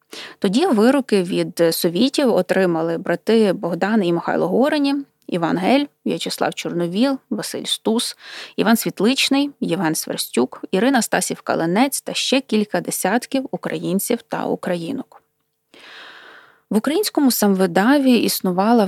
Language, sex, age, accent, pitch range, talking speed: Ukrainian, female, 20-39, native, 180-245 Hz, 105 wpm